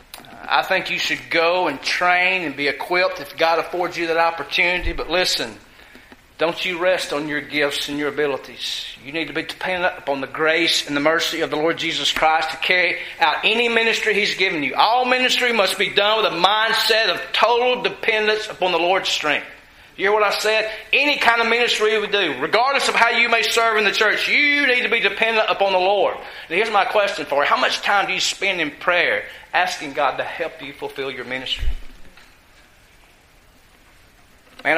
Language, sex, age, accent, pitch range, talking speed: English, male, 40-59, American, 160-215 Hz, 205 wpm